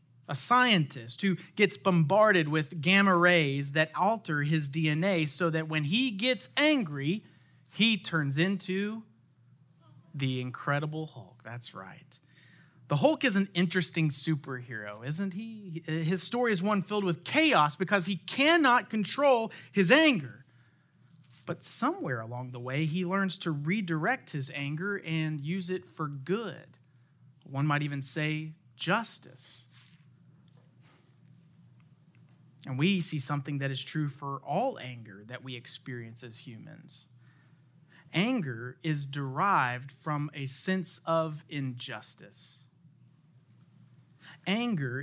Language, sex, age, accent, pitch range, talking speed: English, male, 30-49, American, 140-185 Hz, 125 wpm